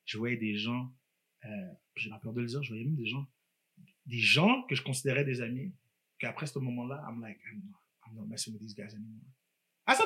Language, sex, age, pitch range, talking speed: French, male, 30-49, 110-145 Hz, 235 wpm